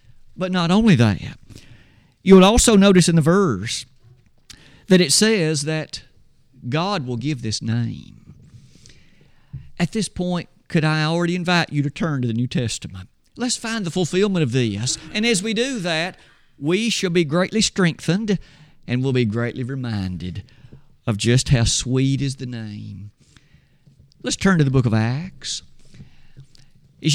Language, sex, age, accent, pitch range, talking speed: English, male, 50-69, American, 130-190 Hz, 155 wpm